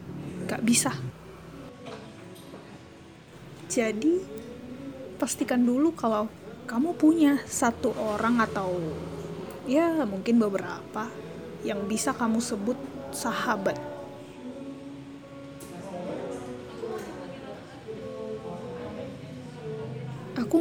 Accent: native